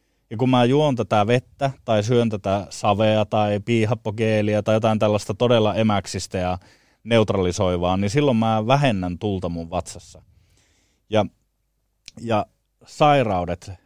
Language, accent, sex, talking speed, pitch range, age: Finnish, native, male, 125 wpm, 100-125 Hz, 30-49